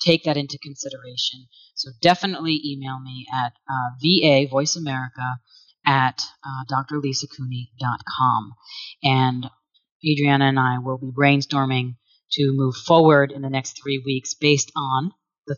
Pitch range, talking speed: 135-175 Hz, 130 wpm